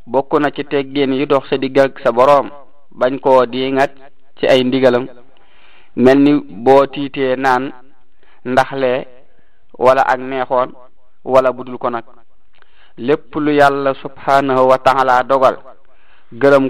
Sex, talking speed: male, 100 wpm